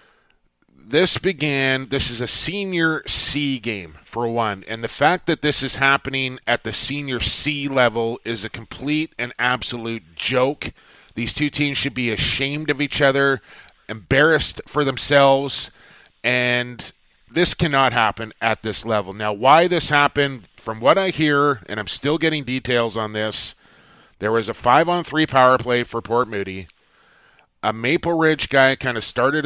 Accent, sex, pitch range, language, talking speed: American, male, 115-145 Hz, English, 160 wpm